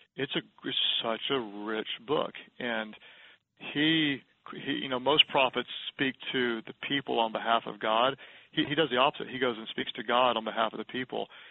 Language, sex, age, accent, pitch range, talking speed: English, male, 40-59, American, 110-125 Hz, 200 wpm